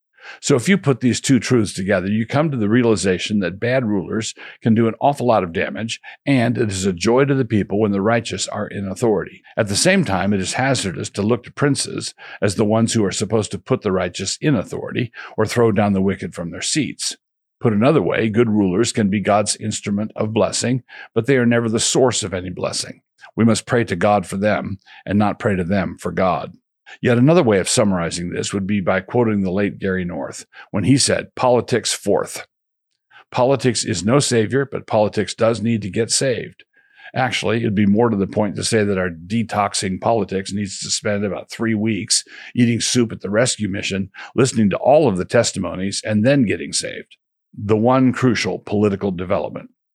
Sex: male